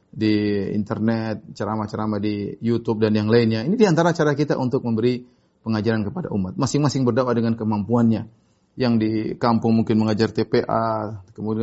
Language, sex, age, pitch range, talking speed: Indonesian, male, 30-49, 110-150 Hz, 145 wpm